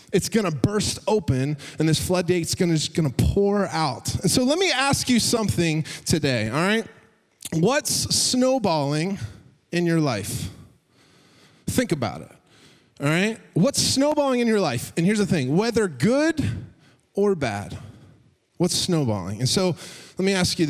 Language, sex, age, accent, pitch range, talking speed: English, male, 20-39, American, 135-205 Hz, 160 wpm